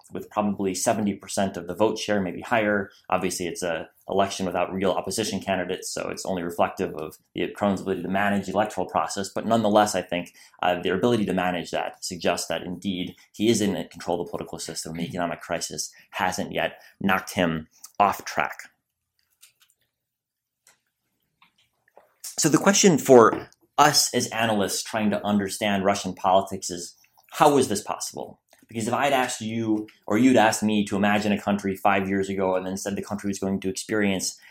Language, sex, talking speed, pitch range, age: English, male, 180 wpm, 95-110 Hz, 30-49